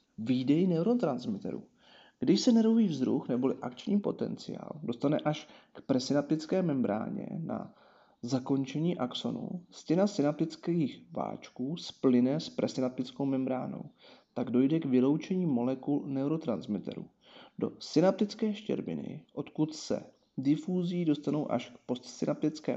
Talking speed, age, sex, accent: 105 wpm, 40-59, male, native